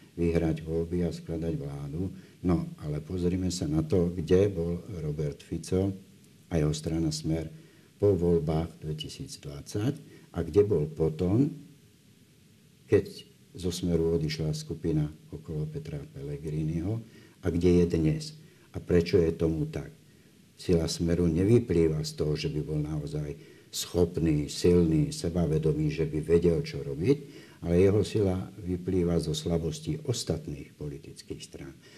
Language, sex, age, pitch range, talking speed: Slovak, male, 60-79, 80-90 Hz, 130 wpm